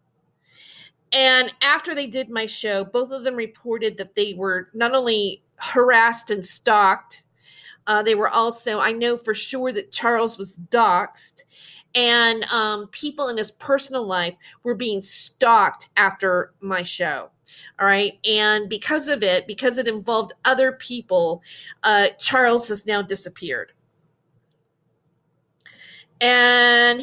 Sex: female